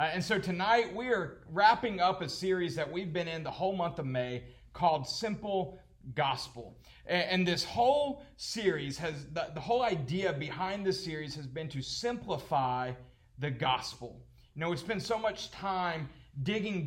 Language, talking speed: English, 175 wpm